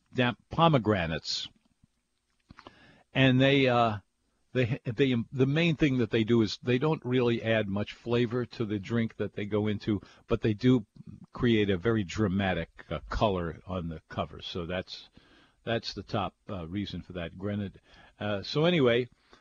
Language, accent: English, American